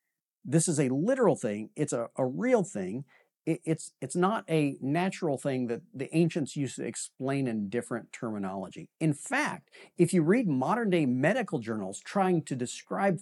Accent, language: American, English